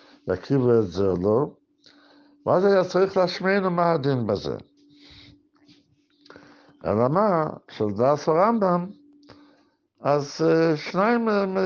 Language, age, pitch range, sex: Hebrew, 60-79, 145-230 Hz, male